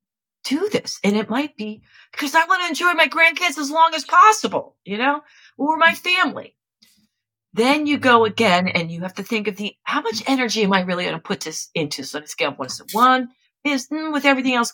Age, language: 40-59, English